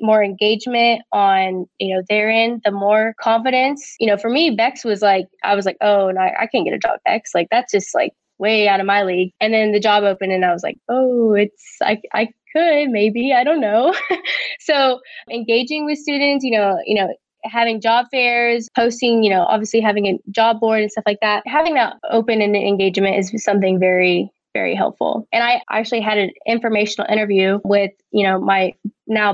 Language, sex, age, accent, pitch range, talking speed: English, female, 10-29, American, 200-235 Hz, 200 wpm